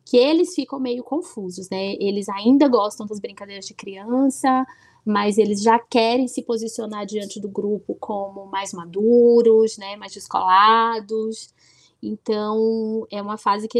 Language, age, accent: Portuguese, 20-39, Brazilian